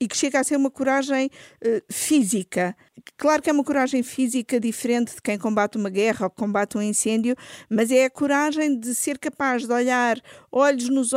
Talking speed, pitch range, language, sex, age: 190 wpm, 240-285 Hz, Portuguese, female, 50-69